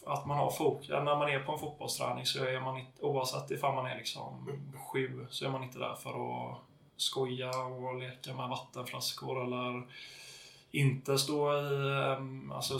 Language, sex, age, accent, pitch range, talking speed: Swedish, male, 20-39, native, 130-145 Hz, 185 wpm